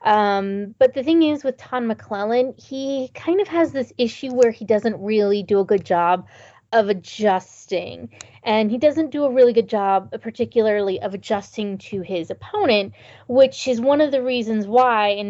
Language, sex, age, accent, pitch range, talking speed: English, female, 20-39, American, 200-265 Hz, 180 wpm